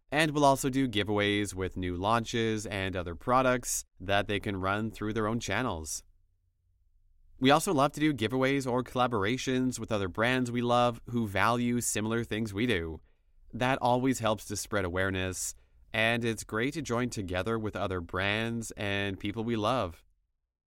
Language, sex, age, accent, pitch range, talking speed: English, male, 30-49, American, 95-125 Hz, 165 wpm